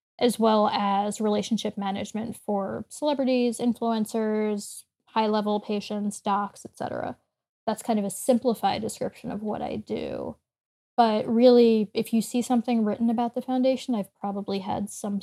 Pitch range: 210-245 Hz